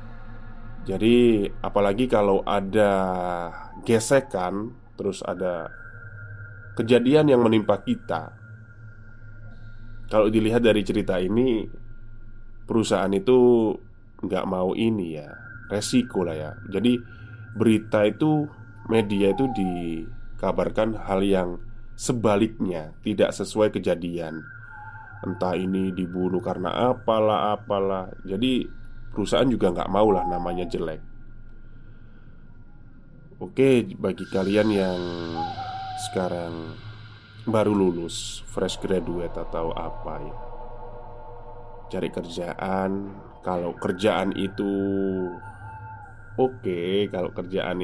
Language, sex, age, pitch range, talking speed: Indonesian, male, 20-39, 95-115 Hz, 90 wpm